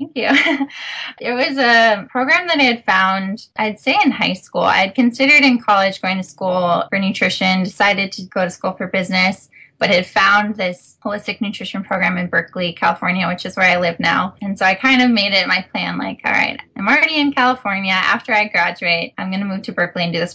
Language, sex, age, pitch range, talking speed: English, female, 10-29, 185-250 Hz, 225 wpm